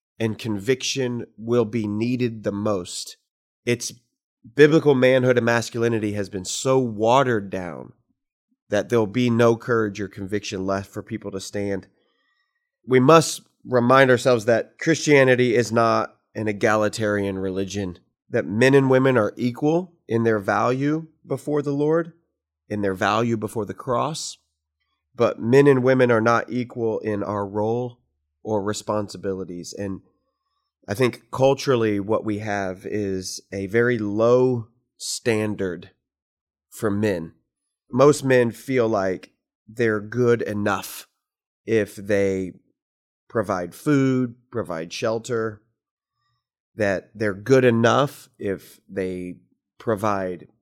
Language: English